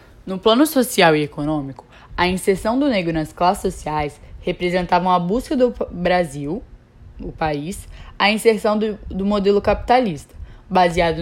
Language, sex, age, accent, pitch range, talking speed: Portuguese, female, 10-29, Brazilian, 165-220 Hz, 140 wpm